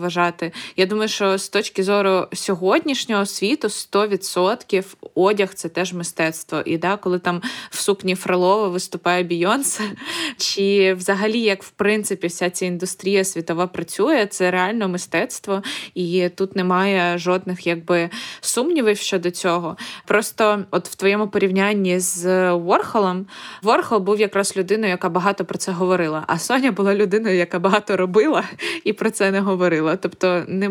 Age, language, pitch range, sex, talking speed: 20-39, Ukrainian, 180-205 Hz, female, 145 wpm